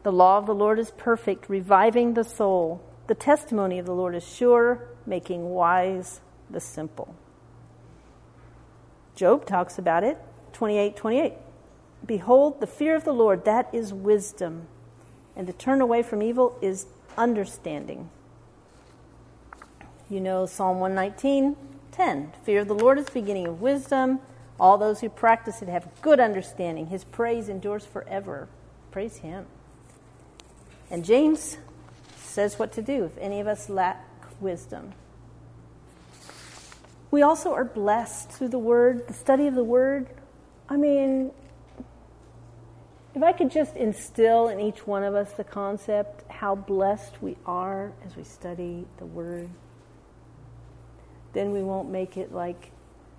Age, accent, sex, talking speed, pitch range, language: 50-69, American, female, 145 wpm, 180-230 Hz, English